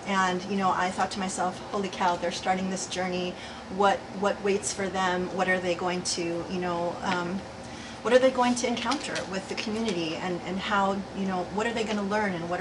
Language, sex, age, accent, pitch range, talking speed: English, female, 30-49, American, 175-205 Hz, 230 wpm